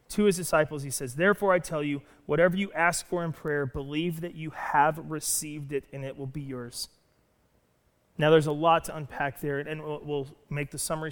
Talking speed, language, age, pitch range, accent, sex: 205 wpm, English, 30-49, 155-210 Hz, American, male